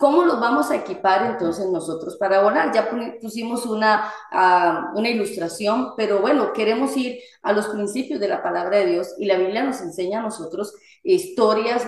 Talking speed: 175 wpm